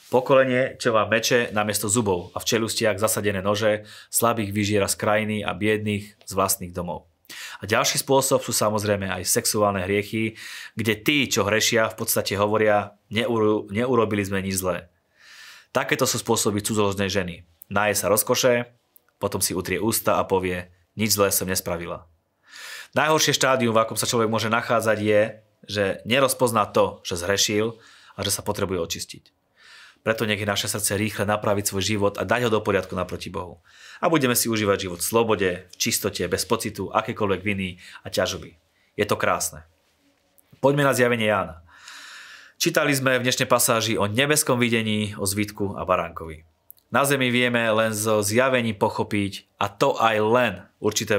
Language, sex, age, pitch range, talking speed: Slovak, male, 30-49, 95-115 Hz, 160 wpm